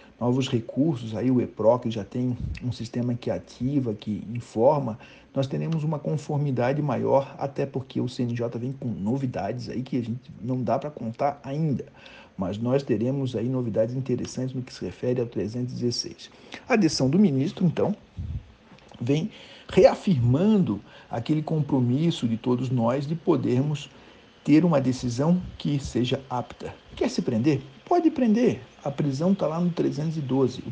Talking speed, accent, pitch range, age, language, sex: 150 wpm, Brazilian, 120-145 Hz, 60-79, Portuguese, male